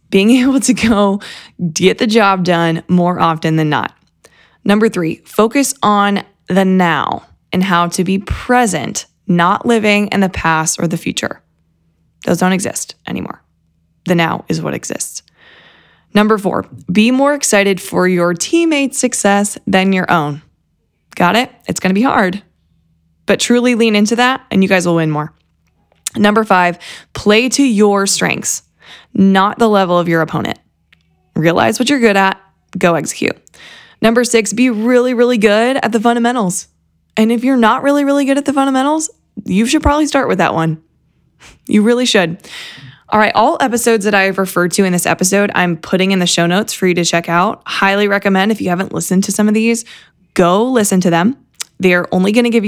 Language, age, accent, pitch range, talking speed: English, 20-39, American, 175-235 Hz, 180 wpm